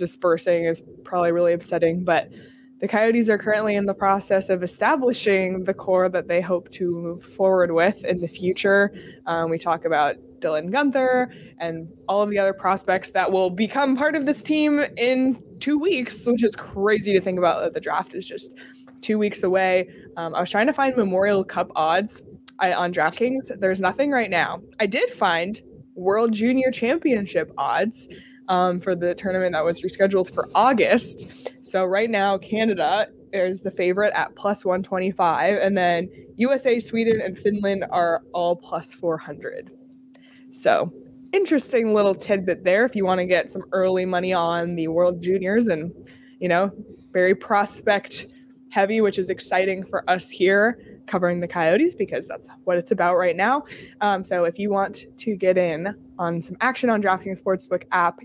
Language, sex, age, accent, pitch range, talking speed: English, female, 20-39, American, 180-235 Hz, 175 wpm